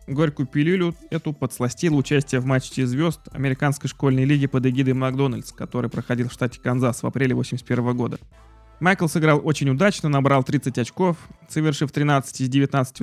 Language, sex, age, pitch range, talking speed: Russian, male, 20-39, 130-150 Hz, 155 wpm